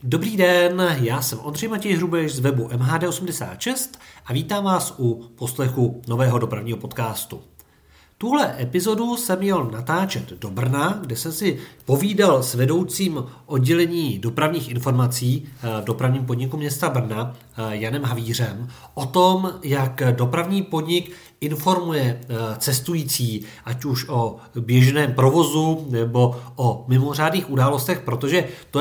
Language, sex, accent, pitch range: Czech, male, native, 120-160 Hz